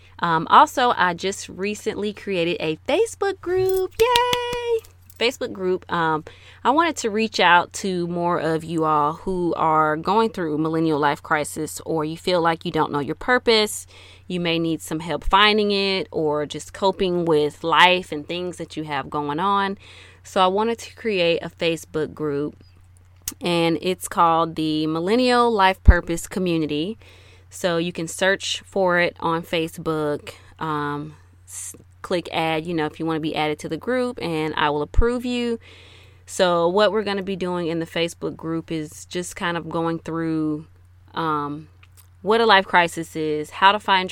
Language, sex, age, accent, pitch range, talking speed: English, female, 20-39, American, 155-190 Hz, 175 wpm